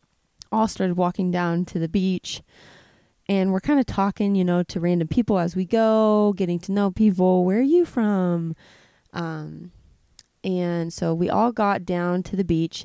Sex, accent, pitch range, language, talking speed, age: female, American, 170-200 Hz, English, 175 wpm, 20-39